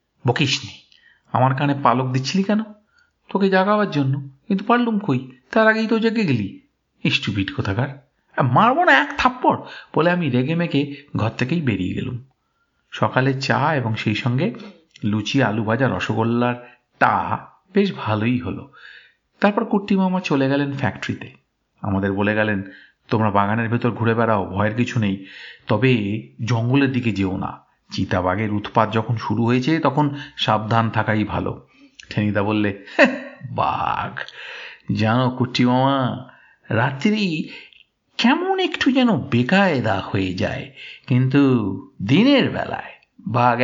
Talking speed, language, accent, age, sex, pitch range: 130 wpm, Bengali, native, 50-69, male, 115-185 Hz